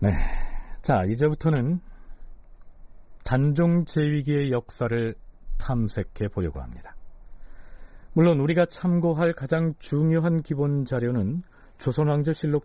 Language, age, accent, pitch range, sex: Korean, 40-59, native, 105-160 Hz, male